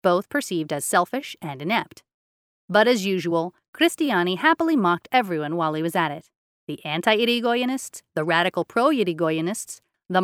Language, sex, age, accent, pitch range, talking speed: English, female, 30-49, American, 165-235 Hz, 140 wpm